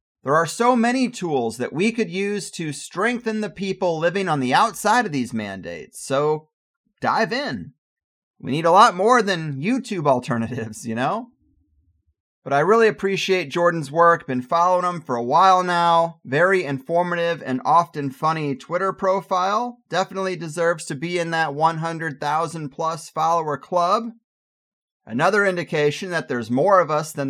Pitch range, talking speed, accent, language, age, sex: 145-200 Hz, 155 wpm, American, English, 30-49, male